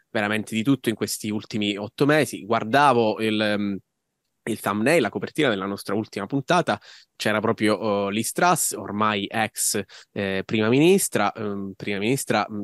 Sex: male